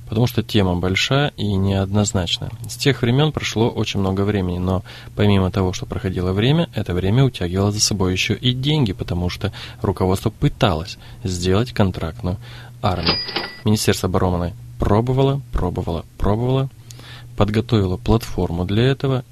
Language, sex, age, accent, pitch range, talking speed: Russian, male, 20-39, native, 100-125 Hz, 135 wpm